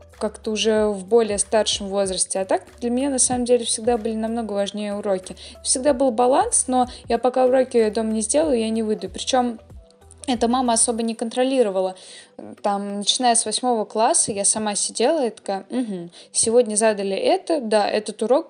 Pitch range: 210-250 Hz